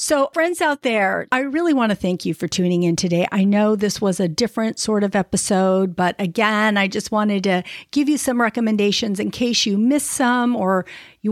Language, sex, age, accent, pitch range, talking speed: English, female, 50-69, American, 185-240 Hz, 210 wpm